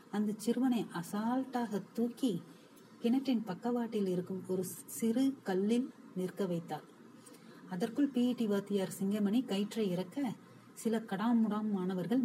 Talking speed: 95 wpm